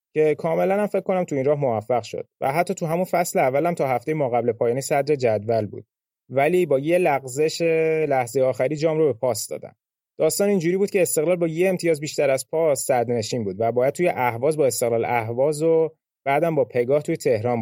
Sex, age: male, 30-49